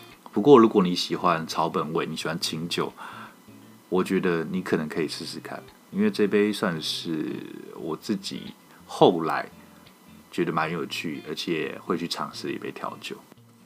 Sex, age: male, 20-39